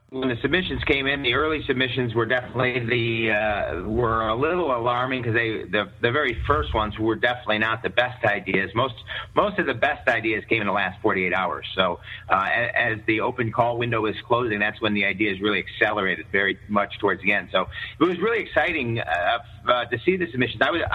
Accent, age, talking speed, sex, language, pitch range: American, 50-69, 220 wpm, male, English, 105-125 Hz